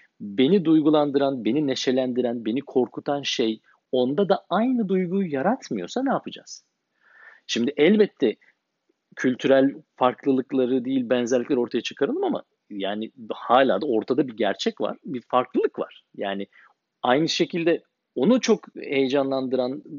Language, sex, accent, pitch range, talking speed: Turkish, male, native, 120-170 Hz, 115 wpm